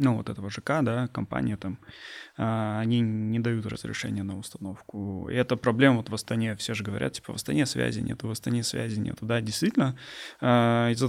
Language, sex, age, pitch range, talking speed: Russian, male, 20-39, 105-125 Hz, 185 wpm